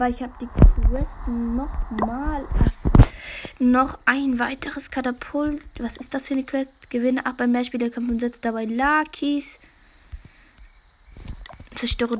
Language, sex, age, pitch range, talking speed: German, female, 20-39, 235-275 Hz, 140 wpm